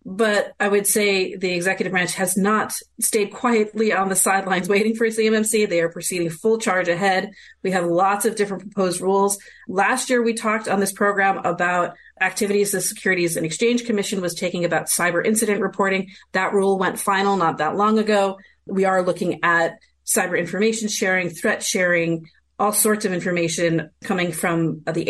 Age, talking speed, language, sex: 30-49, 175 wpm, English, female